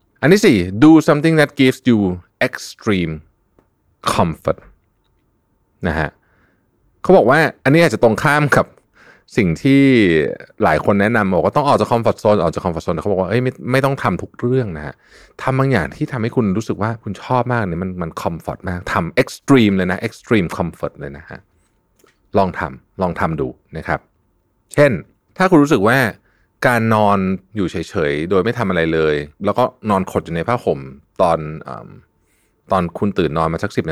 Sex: male